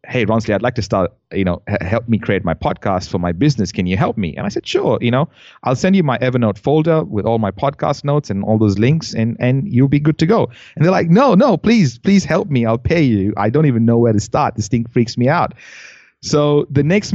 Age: 30-49